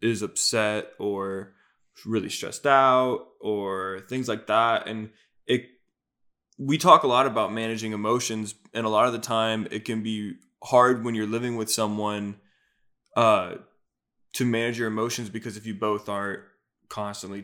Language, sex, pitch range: English, male, 105-120 Hz